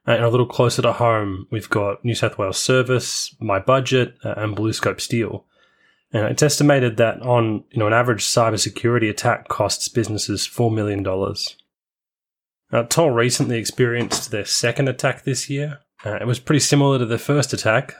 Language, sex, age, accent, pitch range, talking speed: English, male, 20-39, Australian, 105-125 Hz, 180 wpm